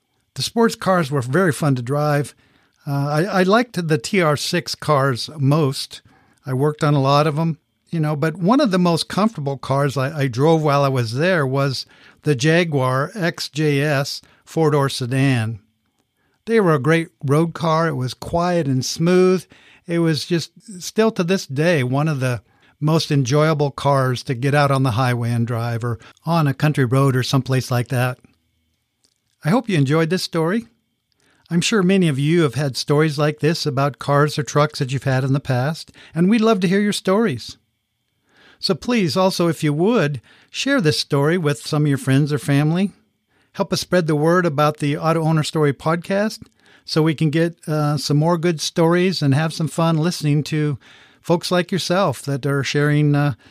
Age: 50-69